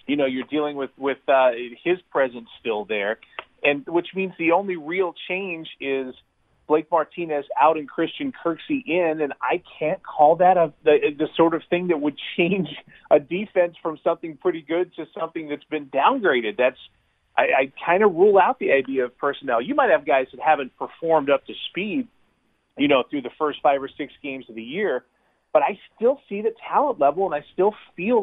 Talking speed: 200 wpm